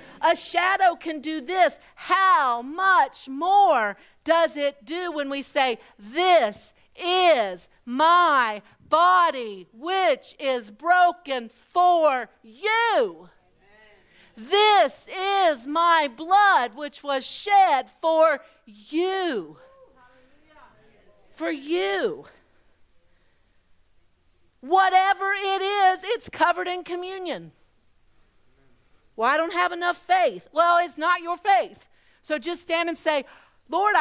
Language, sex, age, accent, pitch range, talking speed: English, female, 50-69, American, 245-355 Hz, 100 wpm